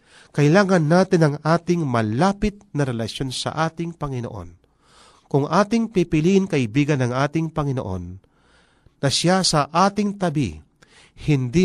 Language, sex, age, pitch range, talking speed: Filipino, male, 40-59, 115-165 Hz, 120 wpm